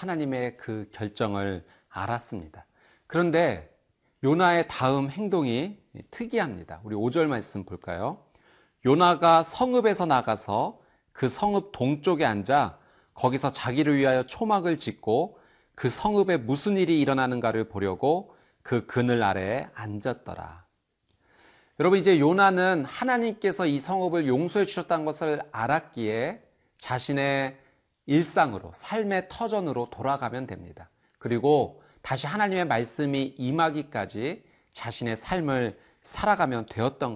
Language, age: Korean, 40-59